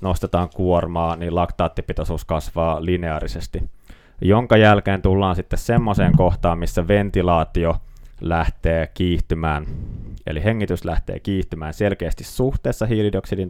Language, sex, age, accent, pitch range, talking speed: Finnish, male, 20-39, native, 80-95 Hz, 100 wpm